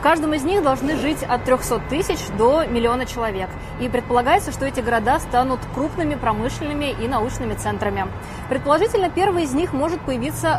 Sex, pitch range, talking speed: female, 220-295 Hz, 165 wpm